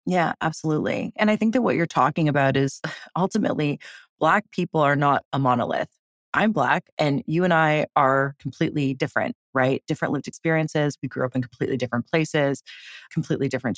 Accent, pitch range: American, 130-160 Hz